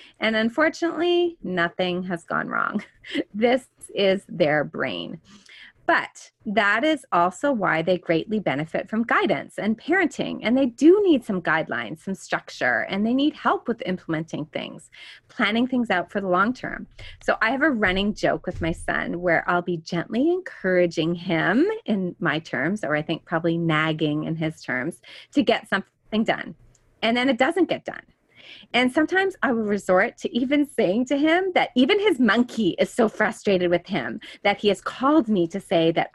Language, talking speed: English, 180 wpm